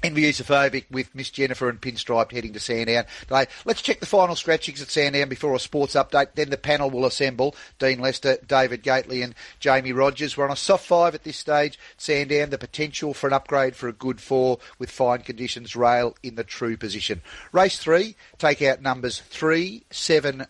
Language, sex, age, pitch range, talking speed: English, male, 40-59, 120-150 Hz, 195 wpm